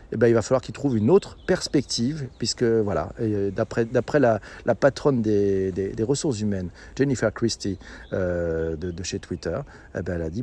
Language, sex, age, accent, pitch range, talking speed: French, male, 40-59, French, 115-150 Hz, 200 wpm